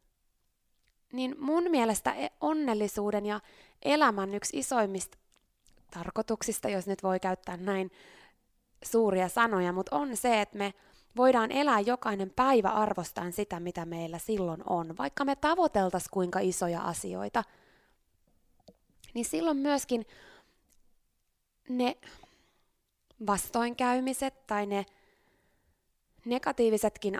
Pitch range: 185-250 Hz